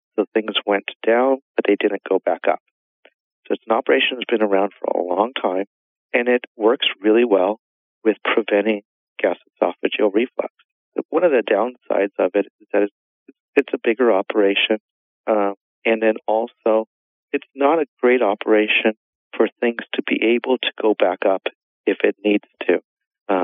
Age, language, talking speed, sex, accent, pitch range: 50-69, English, 165 wpm, male, American, 100-115 Hz